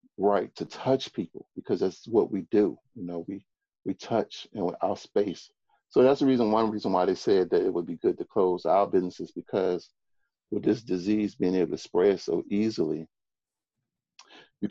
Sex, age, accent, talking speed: male, 40-59, American, 185 wpm